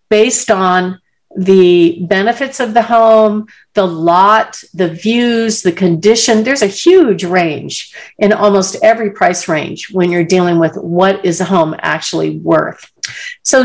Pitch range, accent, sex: 180-230 Hz, American, female